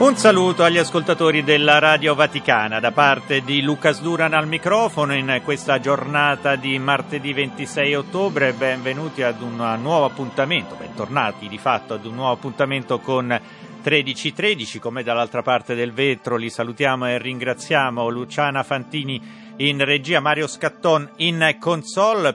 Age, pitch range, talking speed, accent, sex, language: 40-59, 125-160 Hz, 140 wpm, native, male, Italian